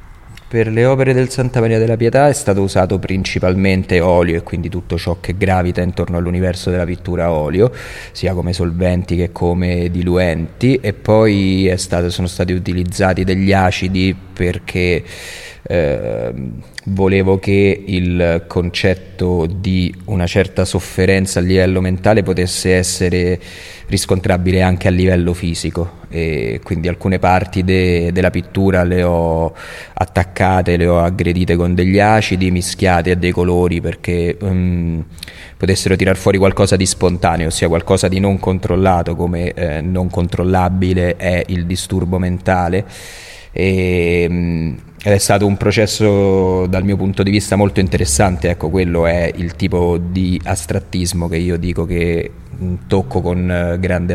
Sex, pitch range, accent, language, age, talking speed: male, 85-95 Hz, native, Italian, 30-49, 140 wpm